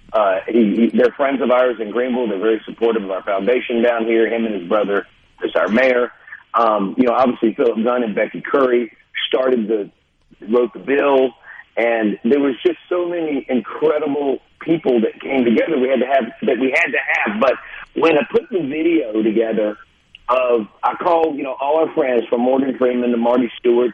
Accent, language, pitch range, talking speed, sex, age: American, English, 120-175 Hz, 200 wpm, male, 40-59